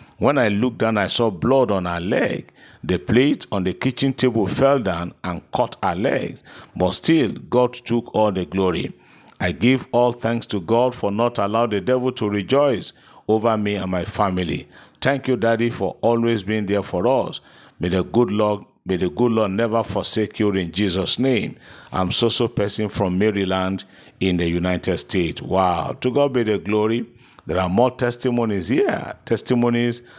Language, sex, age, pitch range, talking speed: English, male, 50-69, 95-120 Hz, 175 wpm